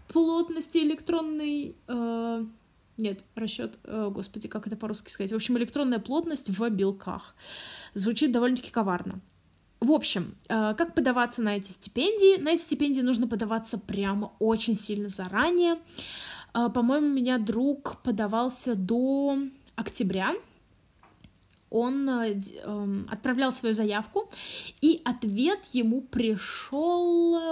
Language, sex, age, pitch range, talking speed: Russian, female, 20-39, 220-290 Hz, 120 wpm